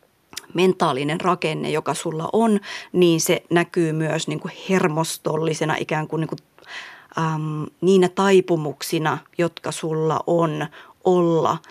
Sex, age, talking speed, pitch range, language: female, 30-49, 120 wpm, 155-175 Hz, Finnish